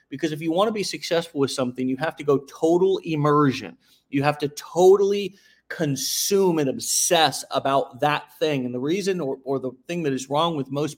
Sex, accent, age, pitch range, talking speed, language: male, American, 40-59, 135-165 Hz, 200 wpm, English